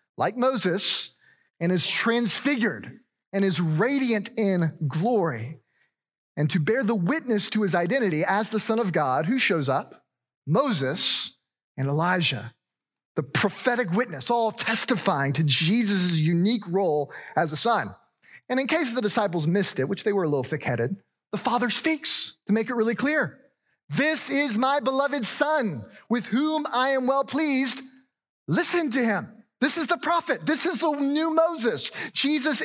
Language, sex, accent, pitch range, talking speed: English, male, American, 170-260 Hz, 160 wpm